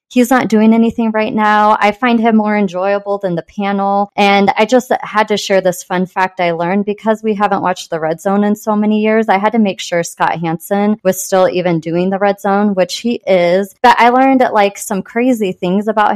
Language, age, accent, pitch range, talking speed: English, 30-49, American, 180-215 Hz, 225 wpm